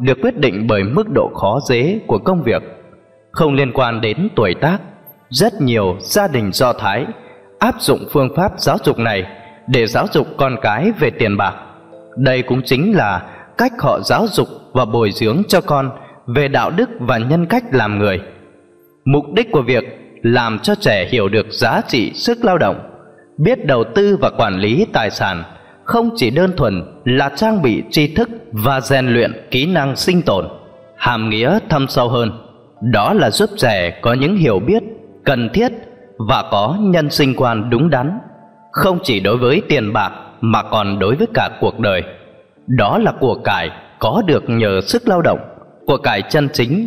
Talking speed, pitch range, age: 185 wpm, 120-185 Hz, 20-39